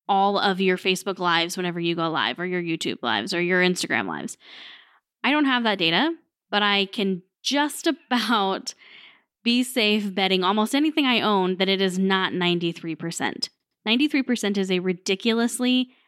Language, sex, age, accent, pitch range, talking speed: English, female, 10-29, American, 190-250 Hz, 160 wpm